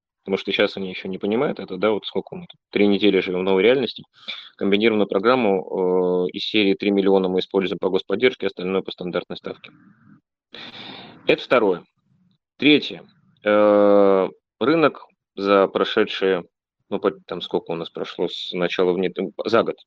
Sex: male